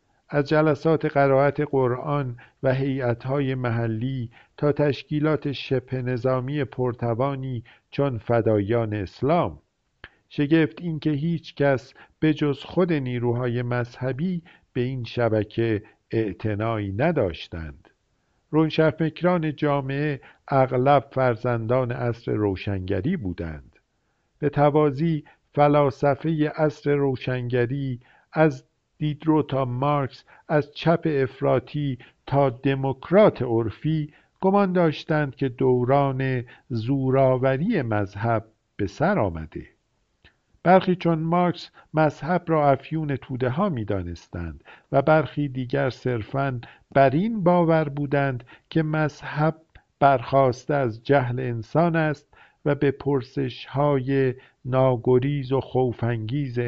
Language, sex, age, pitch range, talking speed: Persian, male, 50-69, 120-150 Hz, 95 wpm